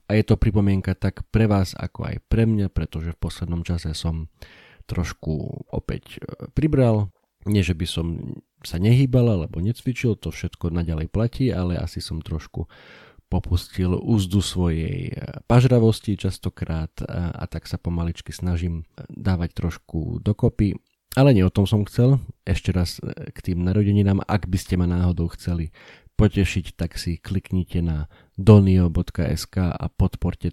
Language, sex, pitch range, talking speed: Slovak, male, 85-105 Hz, 145 wpm